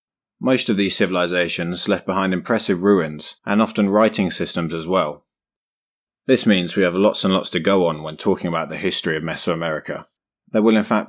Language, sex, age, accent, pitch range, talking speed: English, male, 30-49, British, 85-105 Hz, 190 wpm